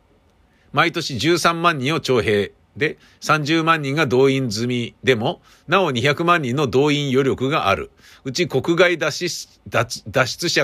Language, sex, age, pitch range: Japanese, male, 50-69, 85-145 Hz